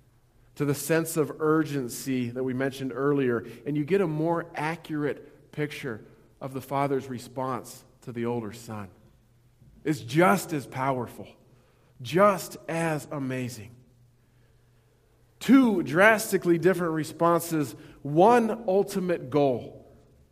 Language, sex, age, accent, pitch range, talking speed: English, male, 40-59, American, 120-155 Hz, 110 wpm